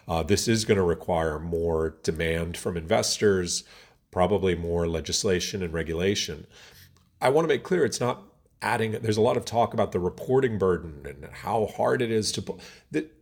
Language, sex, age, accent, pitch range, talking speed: English, male, 40-59, American, 85-105 Hz, 175 wpm